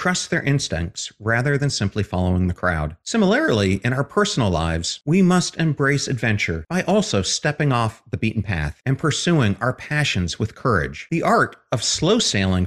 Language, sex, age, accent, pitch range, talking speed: English, male, 40-59, American, 95-150 Hz, 170 wpm